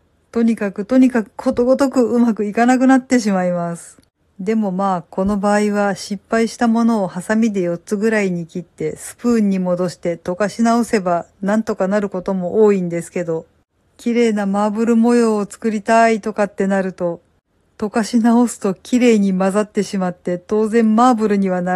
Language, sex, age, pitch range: Japanese, female, 50-69, 180-225 Hz